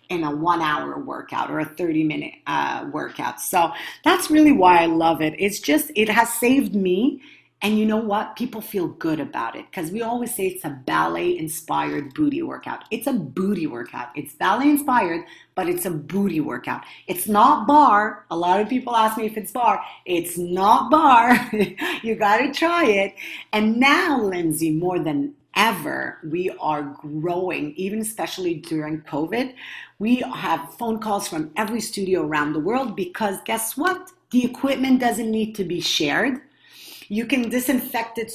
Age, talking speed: 40-59, 170 wpm